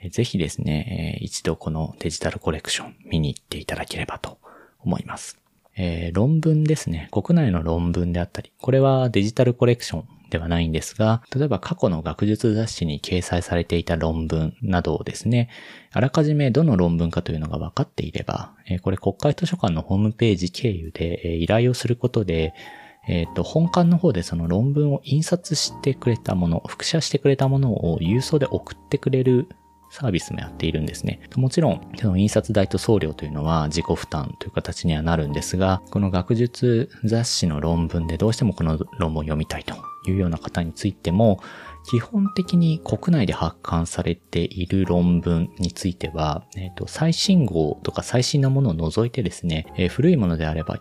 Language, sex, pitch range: Japanese, male, 85-130 Hz